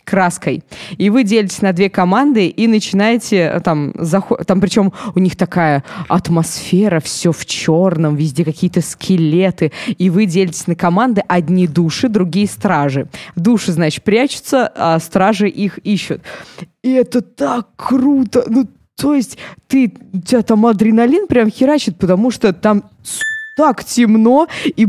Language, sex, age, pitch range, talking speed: Russian, female, 20-39, 185-235 Hz, 140 wpm